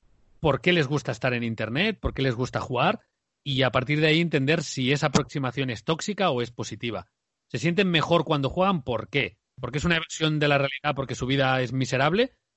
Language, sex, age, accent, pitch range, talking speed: Spanish, male, 30-49, Spanish, 120-150 Hz, 215 wpm